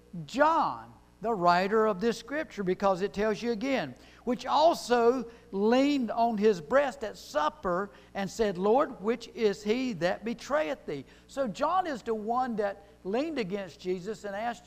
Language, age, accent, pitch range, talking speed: English, 60-79, American, 185-245 Hz, 160 wpm